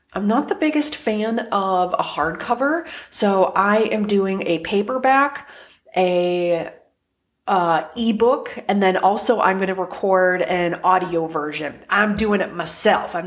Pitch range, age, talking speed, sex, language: 175-210 Hz, 30-49, 140 wpm, female, English